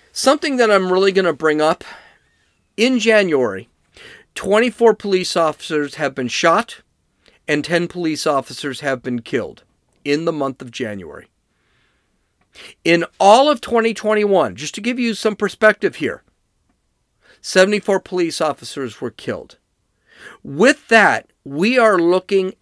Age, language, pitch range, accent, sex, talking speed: 40-59, English, 125-185 Hz, American, male, 130 wpm